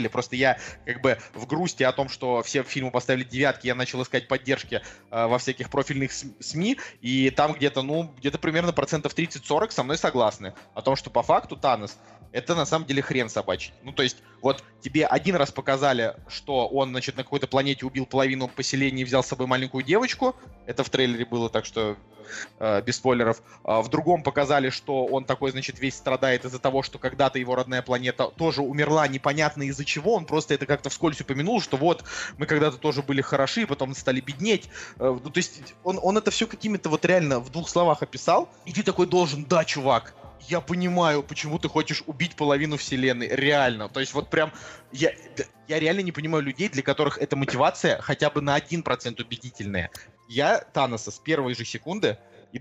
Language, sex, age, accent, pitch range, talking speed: Russian, male, 20-39, native, 125-150 Hz, 195 wpm